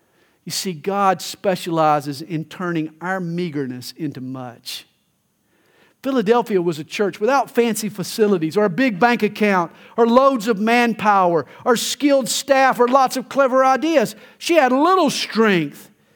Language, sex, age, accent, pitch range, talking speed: English, male, 50-69, American, 150-220 Hz, 140 wpm